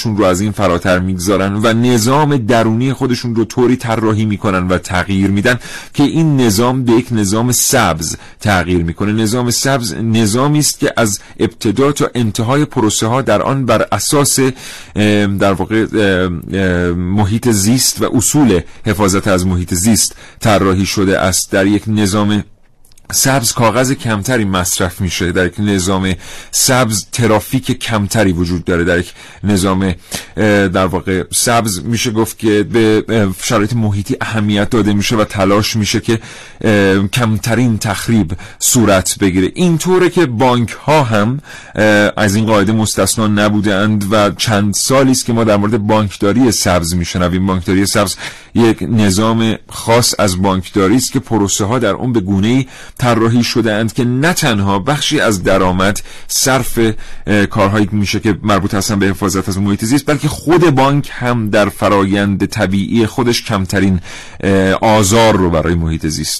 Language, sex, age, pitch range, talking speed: Persian, male, 40-59, 95-120 Hz, 145 wpm